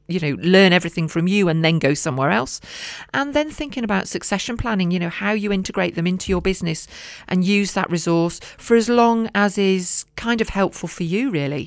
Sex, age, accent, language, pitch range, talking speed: female, 40-59, British, English, 155-200 Hz, 210 wpm